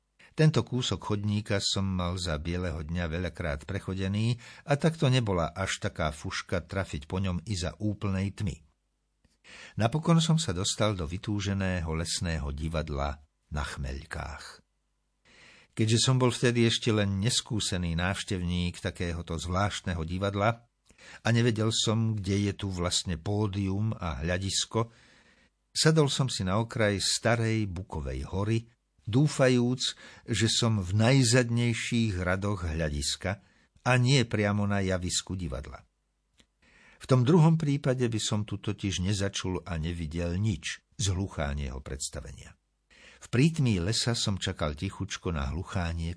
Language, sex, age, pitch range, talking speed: Slovak, male, 60-79, 85-115 Hz, 125 wpm